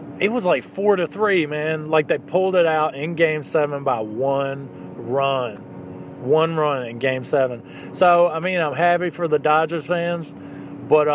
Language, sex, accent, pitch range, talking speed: English, male, American, 125-155 Hz, 170 wpm